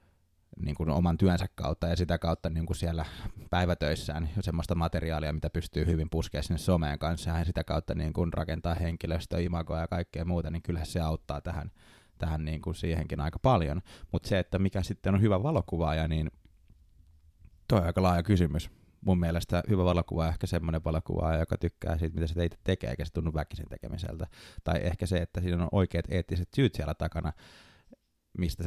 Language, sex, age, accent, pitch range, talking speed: Finnish, male, 20-39, native, 80-90 Hz, 180 wpm